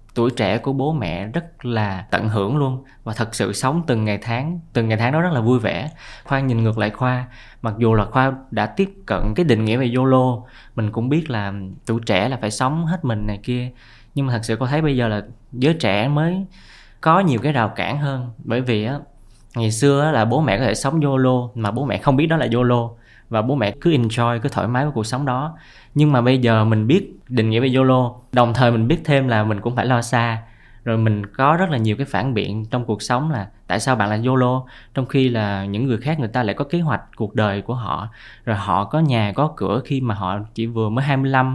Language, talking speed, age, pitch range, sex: Vietnamese, 250 wpm, 20-39, 110-135 Hz, male